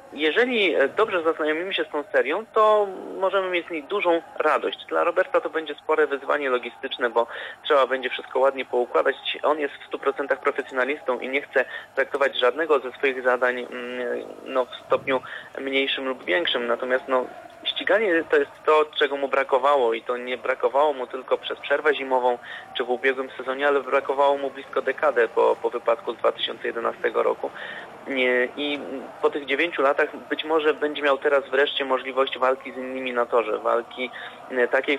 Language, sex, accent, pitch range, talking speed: Polish, male, native, 125-155 Hz, 170 wpm